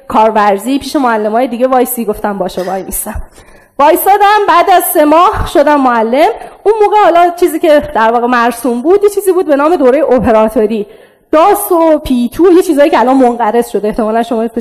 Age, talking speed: 20-39, 180 wpm